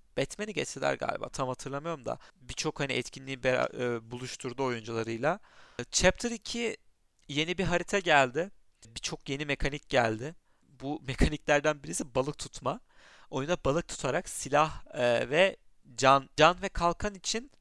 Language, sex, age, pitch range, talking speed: Turkish, male, 40-59, 125-160 Hz, 135 wpm